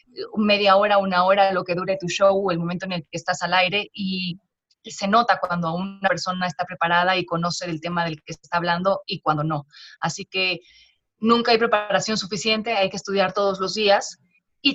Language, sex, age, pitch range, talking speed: Spanish, female, 20-39, 180-225 Hz, 205 wpm